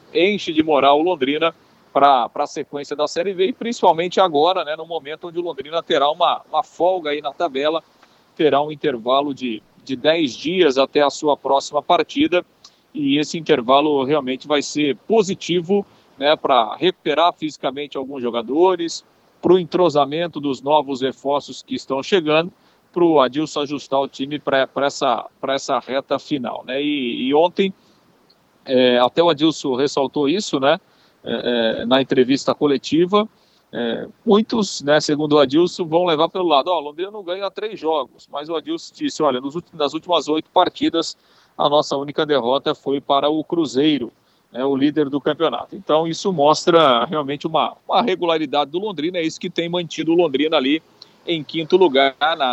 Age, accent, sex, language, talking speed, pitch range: 50-69, Brazilian, male, Portuguese, 170 wpm, 140-175 Hz